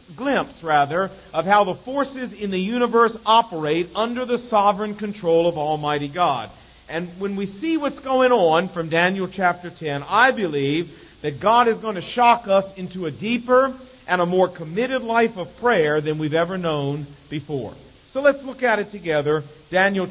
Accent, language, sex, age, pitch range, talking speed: American, English, male, 50-69, 155-225 Hz, 175 wpm